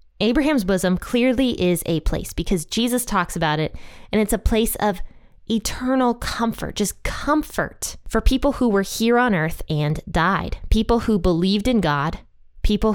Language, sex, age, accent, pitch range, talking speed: English, female, 20-39, American, 170-235 Hz, 160 wpm